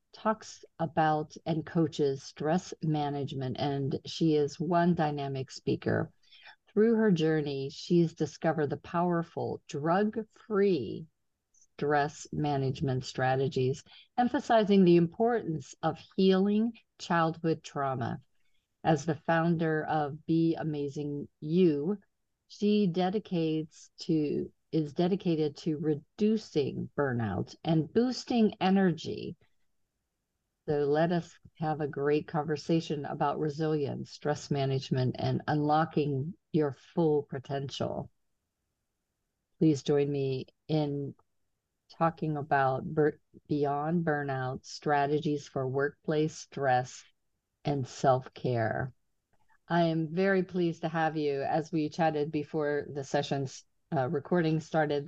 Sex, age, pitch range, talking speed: female, 50-69, 145-170 Hz, 100 wpm